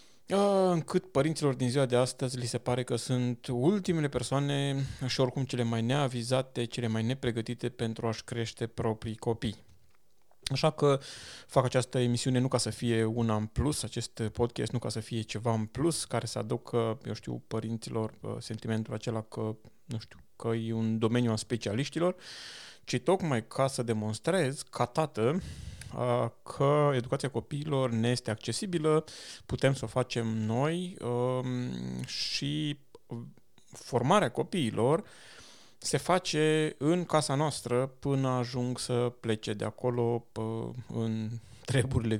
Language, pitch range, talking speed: Romanian, 115-140 Hz, 140 wpm